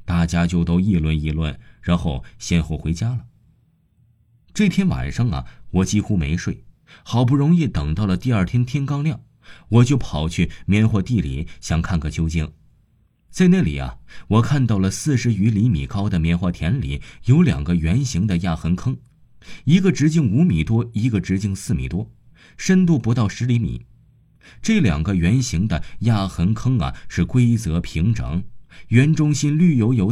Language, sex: Chinese, male